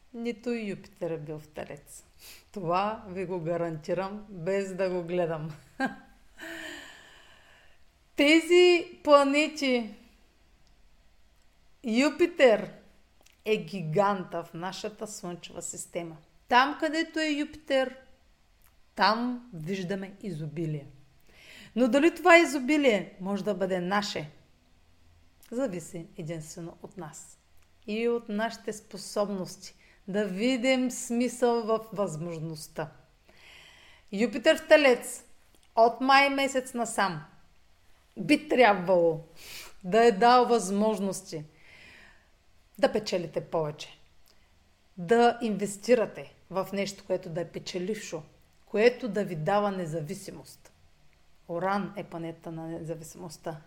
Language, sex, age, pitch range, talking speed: Bulgarian, female, 40-59, 165-235 Hz, 95 wpm